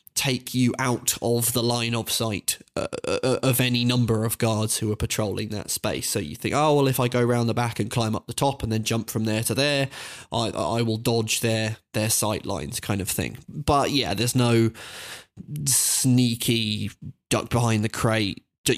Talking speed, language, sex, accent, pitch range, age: 205 wpm, English, male, British, 110-125 Hz, 20-39